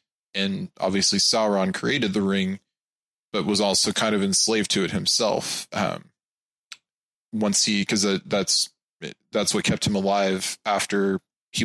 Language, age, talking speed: English, 20-39, 145 wpm